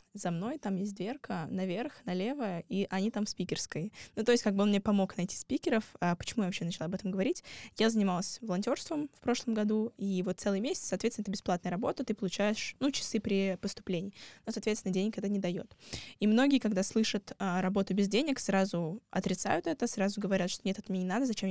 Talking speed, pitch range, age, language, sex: 205 wpm, 185-225 Hz, 10-29, Russian, female